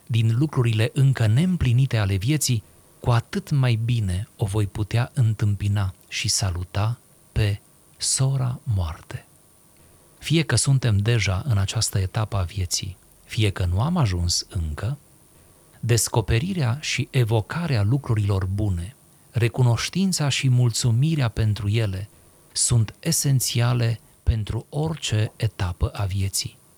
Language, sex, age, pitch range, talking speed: Romanian, male, 40-59, 105-135 Hz, 115 wpm